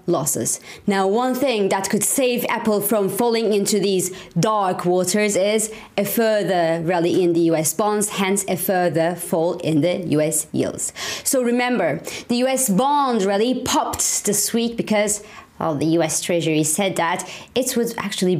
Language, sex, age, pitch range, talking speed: English, female, 30-49, 190-280 Hz, 160 wpm